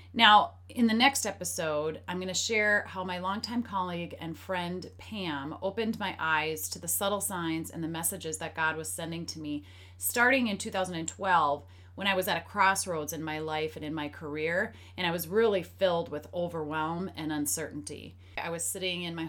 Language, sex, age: English, female, 30-49